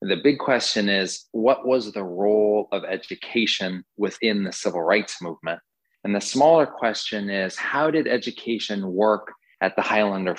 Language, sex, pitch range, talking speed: English, male, 95-115 Hz, 155 wpm